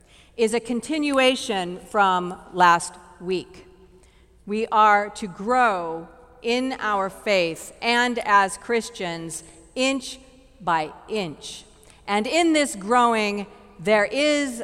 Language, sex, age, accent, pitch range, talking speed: English, female, 40-59, American, 200-265 Hz, 105 wpm